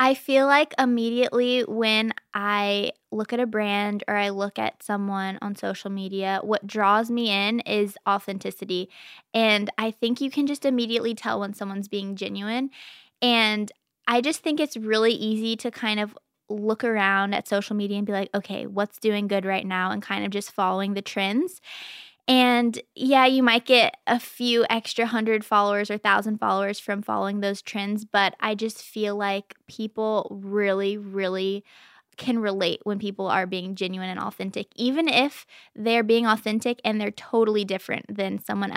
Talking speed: 175 wpm